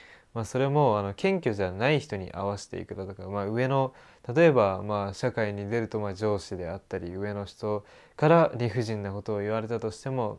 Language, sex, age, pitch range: Japanese, male, 20-39, 100-125 Hz